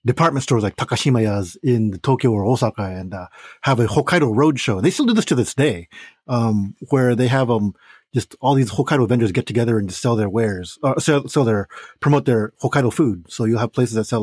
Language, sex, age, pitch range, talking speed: English, male, 30-49, 110-145 Hz, 230 wpm